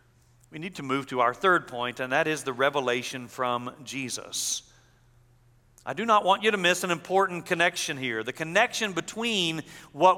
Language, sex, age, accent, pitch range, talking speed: English, male, 40-59, American, 150-215 Hz, 175 wpm